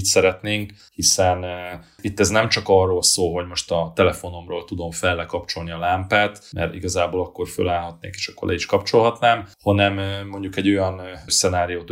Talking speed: 165 wpm